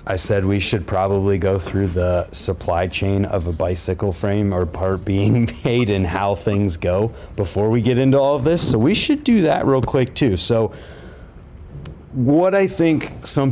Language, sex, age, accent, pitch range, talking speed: English, male, 30-49, American, 90-115 Hz, 185 wpm